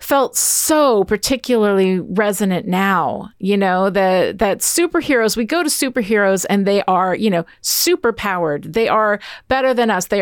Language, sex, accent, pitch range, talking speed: English, female, American, 190-240 Hz, 155 wpm